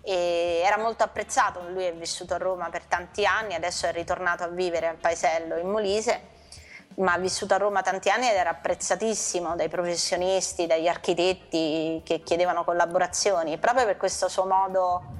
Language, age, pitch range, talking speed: Italian, 30-49, 170-200 Hz, 170 wpm